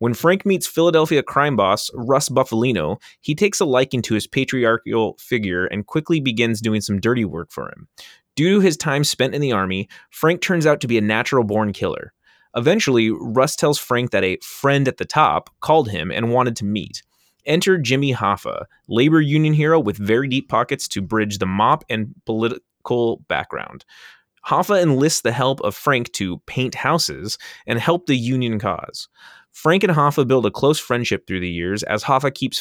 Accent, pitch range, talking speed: American, 105-140 Hz, 185 wpm